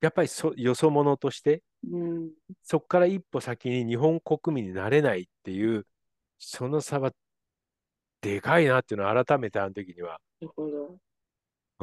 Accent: native